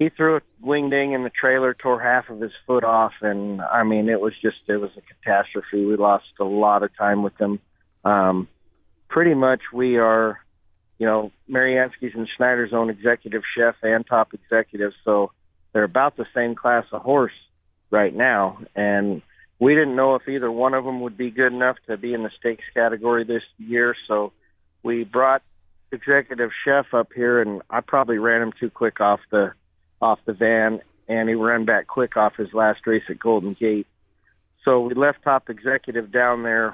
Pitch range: 105-120 Hz